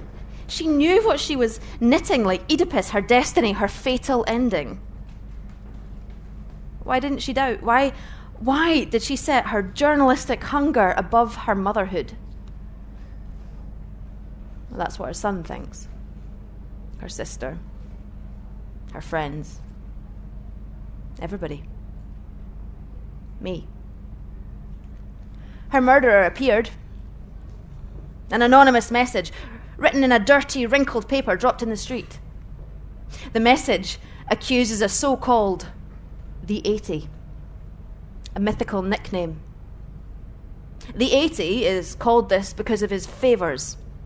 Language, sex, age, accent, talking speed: English, female, 30-49, British, 100 wpm